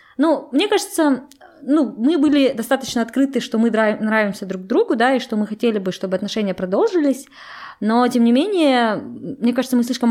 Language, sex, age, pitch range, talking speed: Russian, female, 20-39, 195-260 Hz, 180 wpm